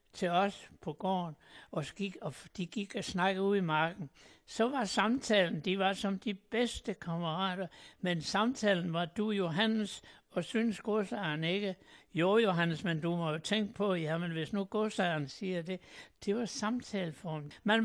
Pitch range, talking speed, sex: 170-210 Hz, 165 wpm, male